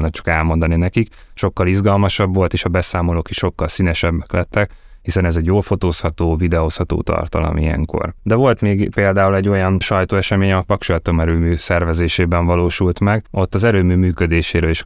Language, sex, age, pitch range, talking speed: Hungarian, male, 20-39, 85-95 Hz, 160 wpm